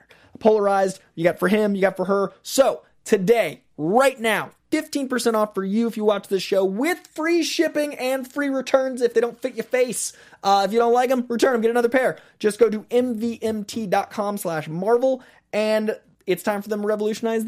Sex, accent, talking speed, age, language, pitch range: male, American, 200 wpm, 20-39, English, 155-220 Hz